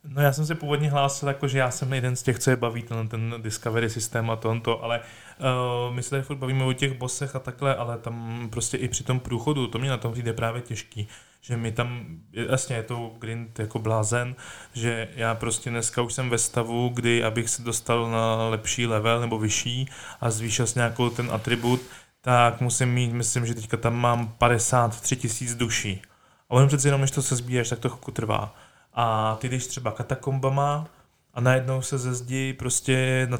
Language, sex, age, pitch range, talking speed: Czech, male, 20-39, 115-135 Hz, 205 wpm